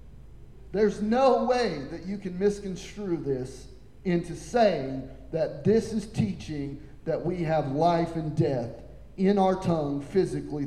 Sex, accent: male, American